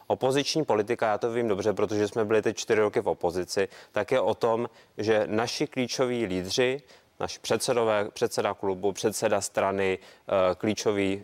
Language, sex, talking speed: Czech, male, 155 wpm